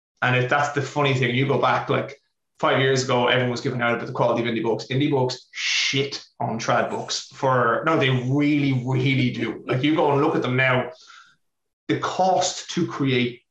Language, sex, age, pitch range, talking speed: English, male, 20-39, 120-145 Hz, 210 wpm